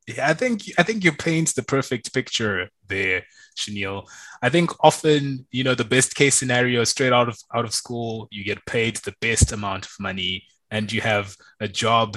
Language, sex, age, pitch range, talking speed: English, male, 20-39, 100-125 Hz, 195 wpm